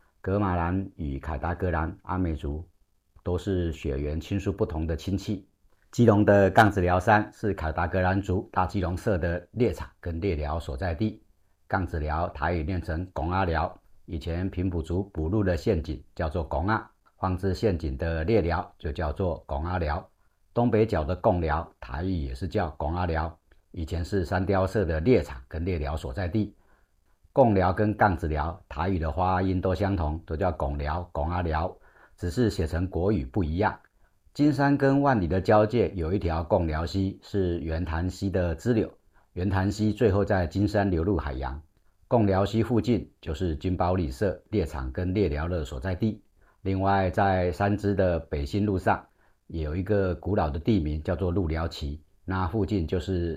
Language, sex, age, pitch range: Chinese, male, 50-69, 80-100 Hz